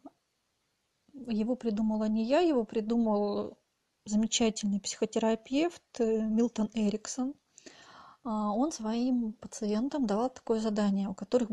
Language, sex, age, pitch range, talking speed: Russian, female, 30-49, 210-250 Hz, 95 wpm